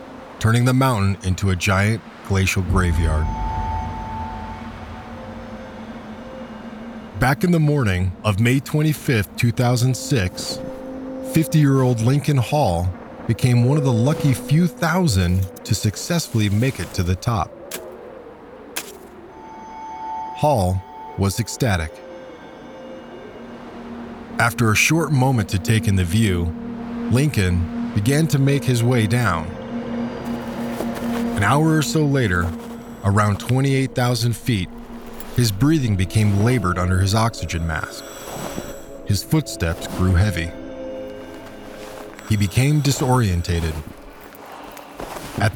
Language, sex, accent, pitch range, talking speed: English, male, American, 95-140 Hz, 100 wpm